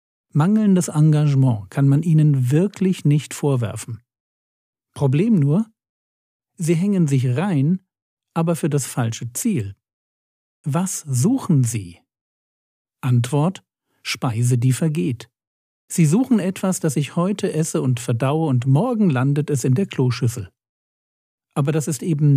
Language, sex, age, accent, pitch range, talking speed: German, male, 50-69, German, 125-165 Hz, 125 wpm